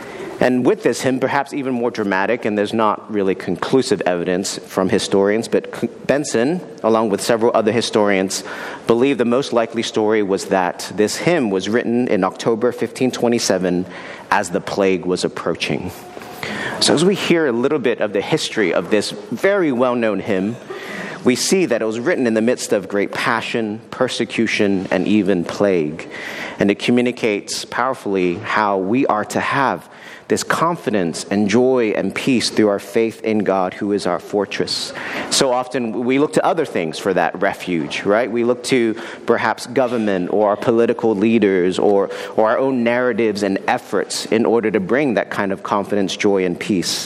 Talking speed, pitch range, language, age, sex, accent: 170 wpm, 95-120 Hz, English, 40-59, male, American